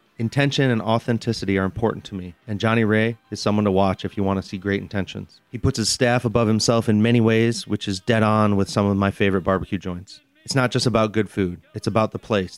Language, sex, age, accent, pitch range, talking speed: English, male, 30-49, American, 100-115 Hz, 240 wpm